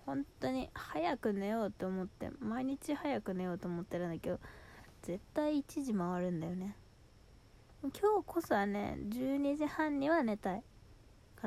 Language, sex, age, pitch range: Japanese, female, 20-39, 185-275 Hz